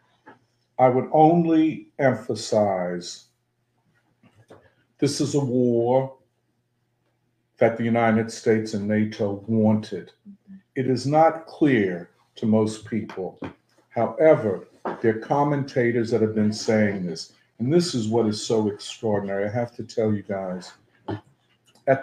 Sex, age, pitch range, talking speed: male, 50-69, 110-120 Hz, 125 wpm